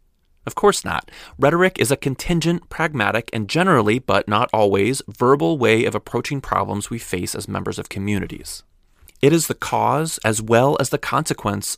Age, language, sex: 30-49, English, male